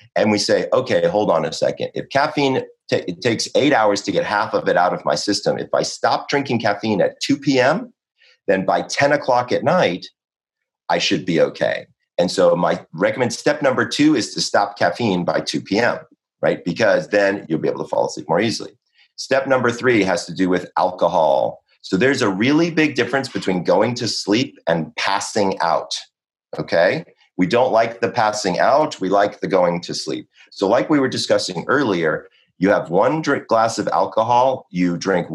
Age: 40-59